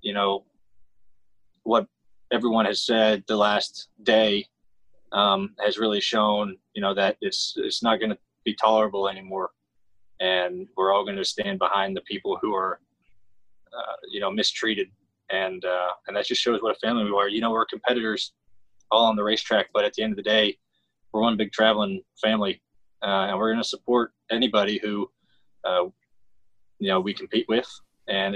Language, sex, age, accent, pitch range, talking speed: English, male, 20-39, American, 100-110 Hz, 180 wpm